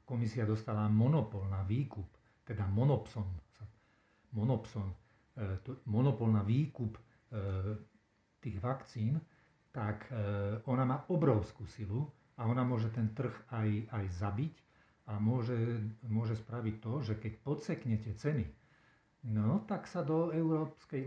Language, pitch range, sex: Slovak, 110-130 Hz, male